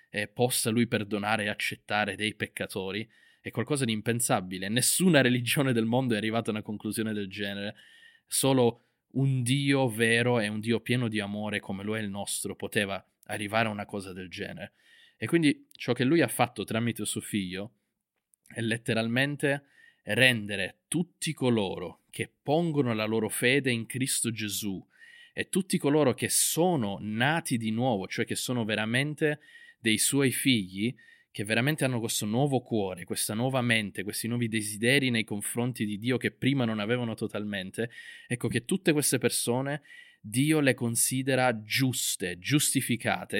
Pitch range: 110-135 Hz